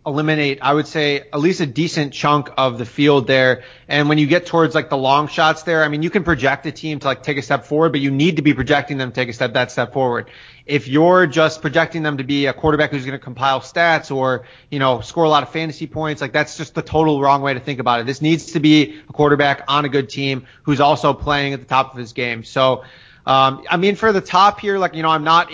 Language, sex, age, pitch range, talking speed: English, male, 30-49, 135-155 Hz, 275 wpm